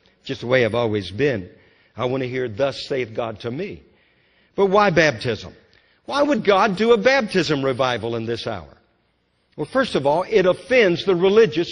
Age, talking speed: 60-79, 185 wpm